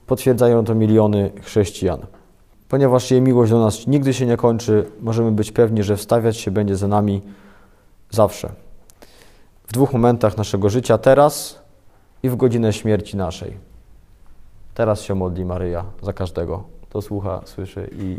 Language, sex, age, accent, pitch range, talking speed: Polish, male, 20-39, native, 95-110 Hz, 145 wpm